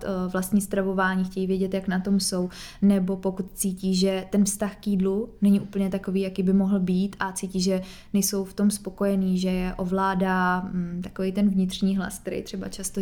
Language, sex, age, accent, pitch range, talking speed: Czech, female, 20-39, native, 185-195 Hz, 185 wpm